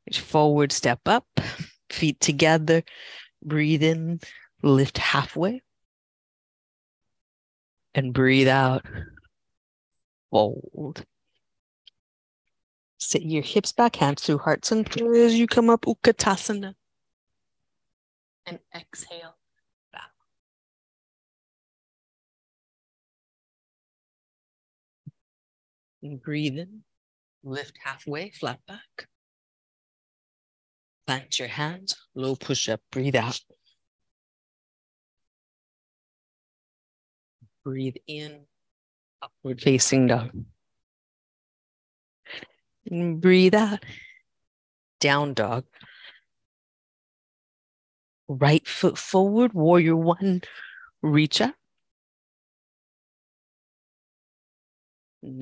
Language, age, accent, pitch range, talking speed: English, 50-69, American, 120-175 Hz, 65 wpm